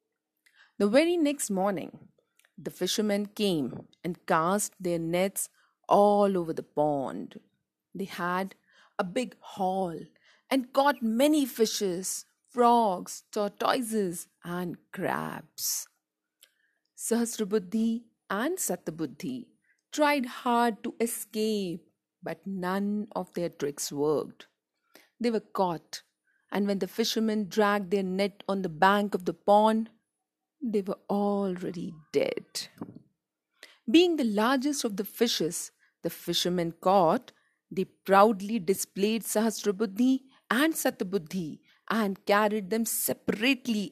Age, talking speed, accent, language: 50-69, 110 wpm, native, Hindi